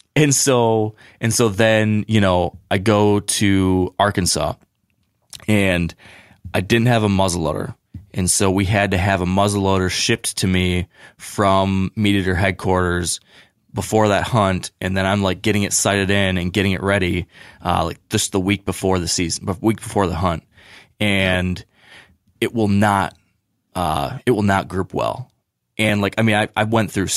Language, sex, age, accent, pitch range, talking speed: English, male, 20-39, American, 95-110 Hz, 170 wpm